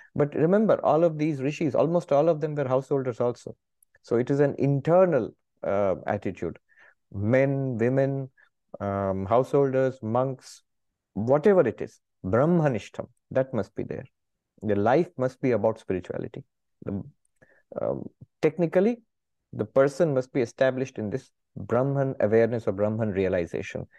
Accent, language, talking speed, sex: Indian, English, 135 wpm, male